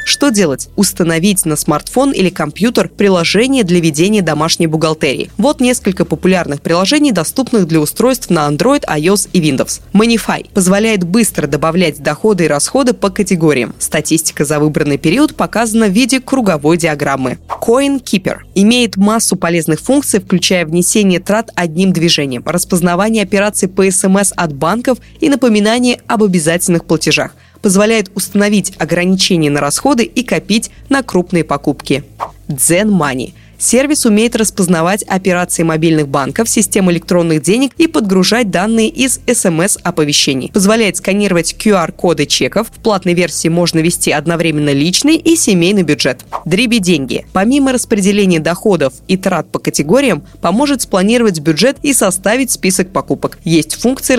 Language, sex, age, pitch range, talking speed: Russian, female, 20-39, 165-220 Hz, 135 wpm